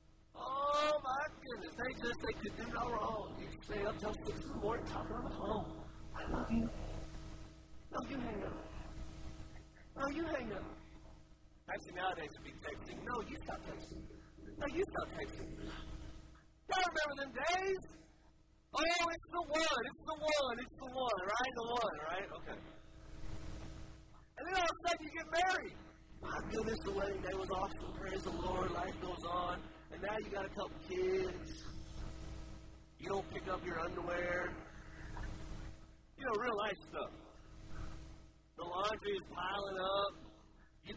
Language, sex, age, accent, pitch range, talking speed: English, male, 40-59, American, 145-245 Hz, 165 wpm